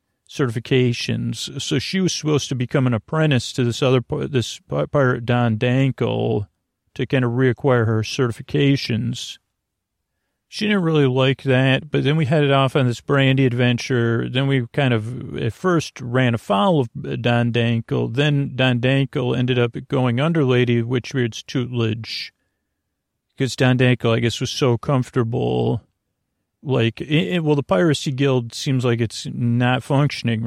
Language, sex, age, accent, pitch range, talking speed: English, male, 40-59, American, 120-140 Hz, 150 wpm